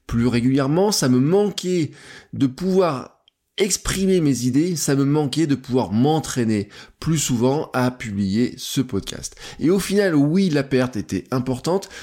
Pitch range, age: 120-165 Hz, 20-39